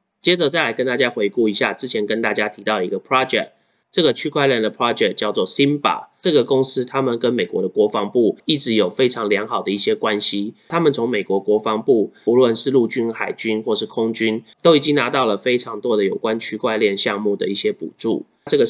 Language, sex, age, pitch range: Chinese, male, 30-49, 105-130 Hz